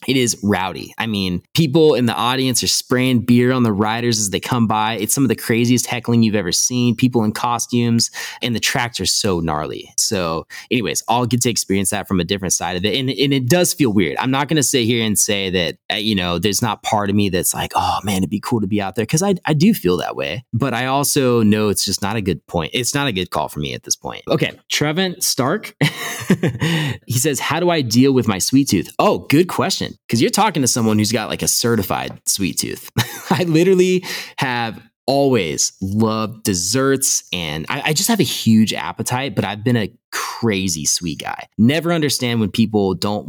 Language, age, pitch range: English, 20-39, 105-135 Hz